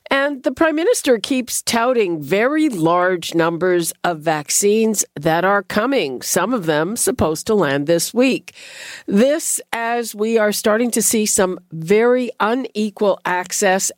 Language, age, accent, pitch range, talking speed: English, 50-69, American, 170-235 Hz, 140 wpm